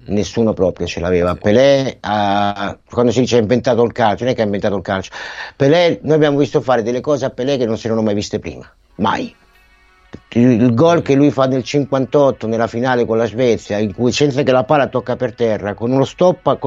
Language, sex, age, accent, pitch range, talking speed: Italian, male, 50-69, native, 125-155 Hz, 225 wpm